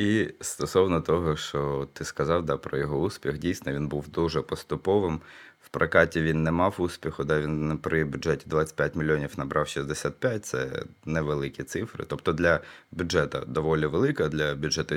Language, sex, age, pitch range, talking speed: Ukrainian, male, 20-39, 75-85 Hz, 160 wpm